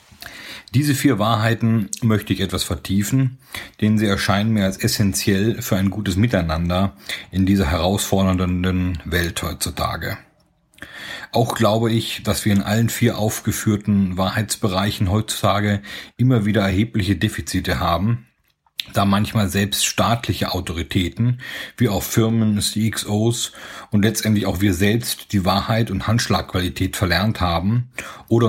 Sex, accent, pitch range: male, German, 95-110 Hz